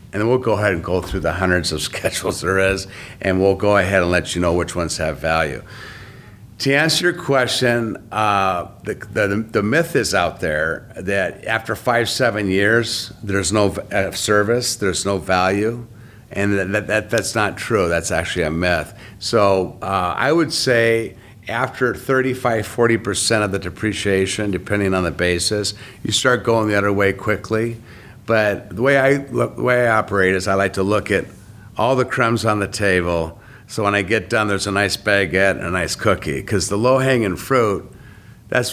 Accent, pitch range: American, 95-115 Hz